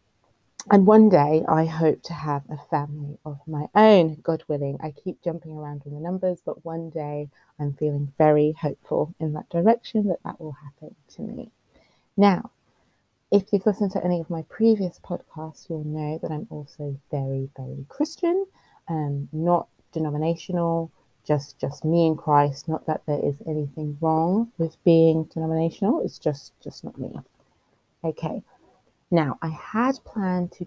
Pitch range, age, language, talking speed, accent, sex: 145-175 Hz, 30-49, English, 160 wpm, British, female